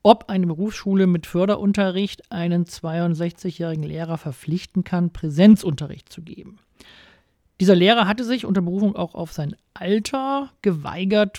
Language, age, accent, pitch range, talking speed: German, 40-59, German, 160-195 Hz, 125 wpm